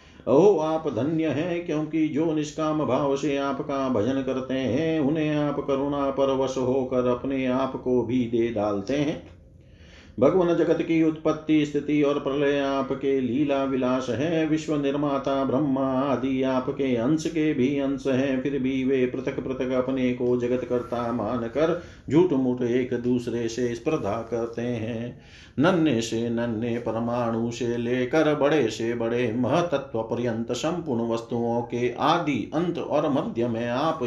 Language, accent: Hindi, native